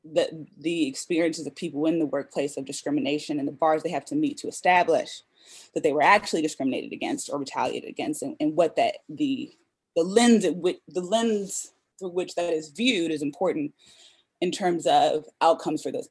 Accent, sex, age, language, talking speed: American, female, 20-39, English, 190 wpm